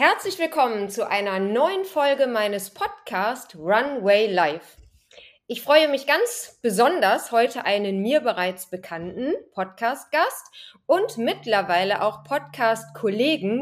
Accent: German